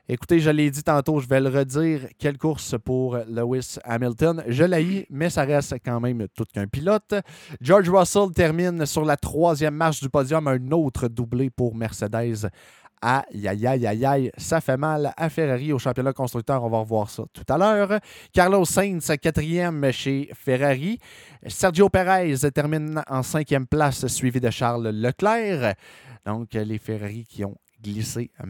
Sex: male